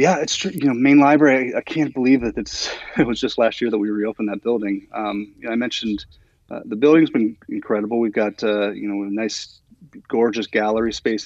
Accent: American